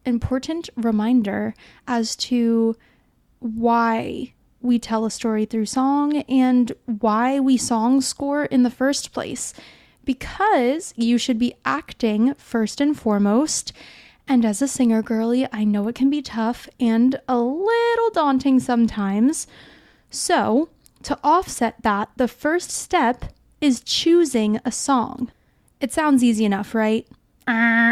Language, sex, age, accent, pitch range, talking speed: English, female, 20-39, American, 220-270 Hz, 130 wpm